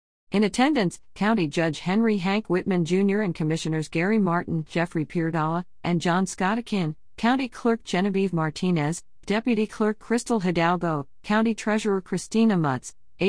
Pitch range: 150-200 Hz